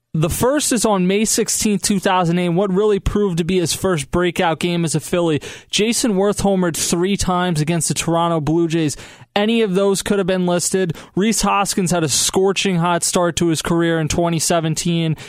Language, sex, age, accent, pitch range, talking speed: English, male, 20-39, American, 165-195 Hz, 190 wpm